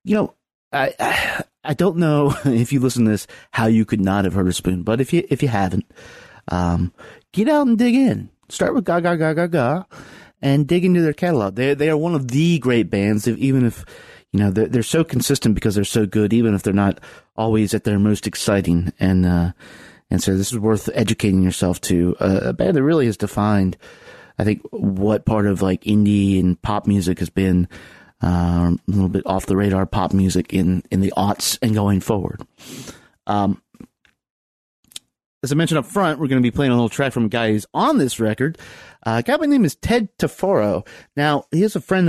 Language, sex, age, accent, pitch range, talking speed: English, male, 30-49, American, 100-145 Hz, 215 wpm